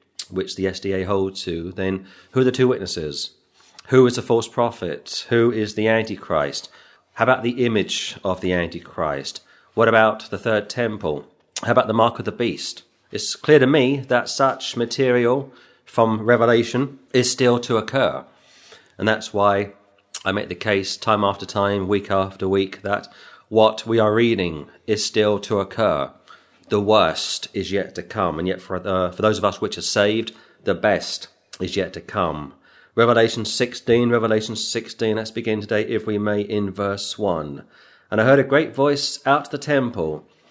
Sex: male